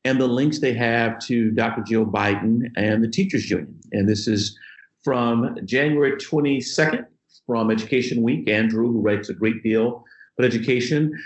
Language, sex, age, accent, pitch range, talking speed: English, male, 50-69, American, 105-125 Hz, 160 wpm